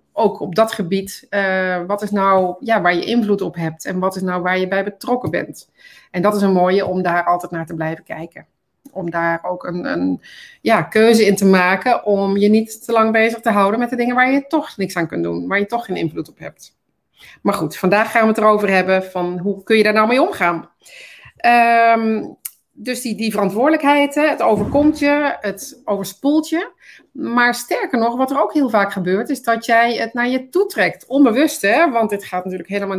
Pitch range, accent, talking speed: 185-235 Hz, Dutch, 220 wpm